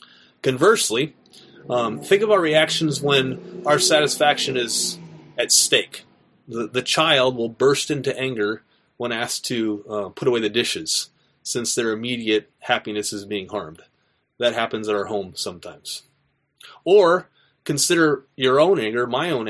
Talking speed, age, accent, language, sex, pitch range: 145 wpm, 30-49, American, English, male, 115-145 Hz